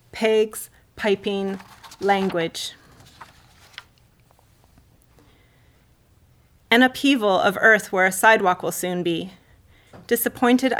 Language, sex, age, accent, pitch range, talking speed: English, female, 30-49, American, 185-220 Hz, 80 wpm